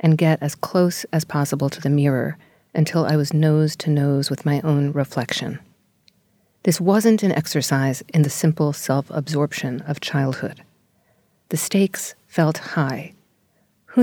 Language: English